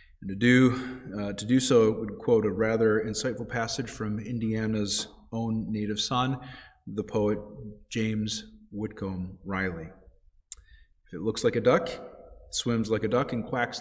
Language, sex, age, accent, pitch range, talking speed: English, male, 30-49, American, 100-130 Hz, 155 wpm